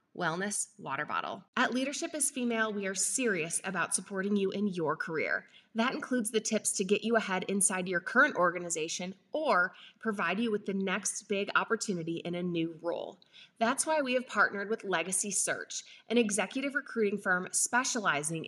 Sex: female